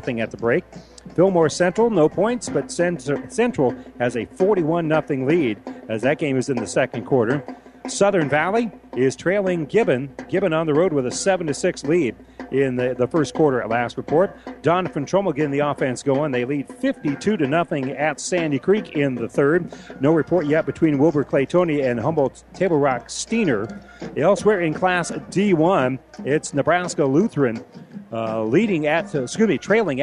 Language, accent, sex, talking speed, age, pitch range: English, American, male, 170 wpm, 40-59, 135-185 Hz